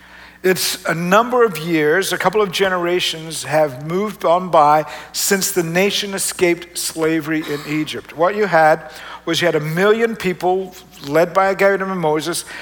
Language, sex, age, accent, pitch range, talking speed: English, male, 50-69, American, 165-205 Hz, 165 wpm